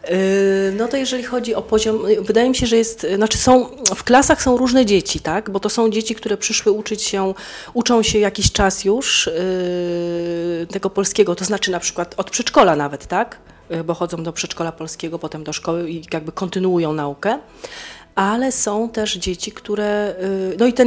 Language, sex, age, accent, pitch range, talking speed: Polish, female, 30-49, native, 170-215 Hz, 165 wpm